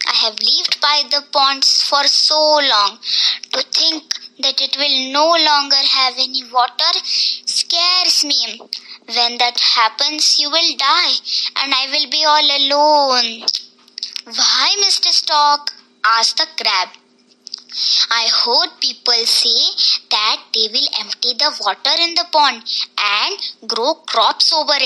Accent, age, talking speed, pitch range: native, 20-39, 135 wpm, 235-300 Hz